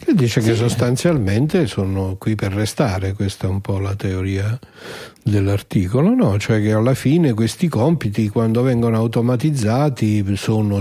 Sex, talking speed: male, 145 wpm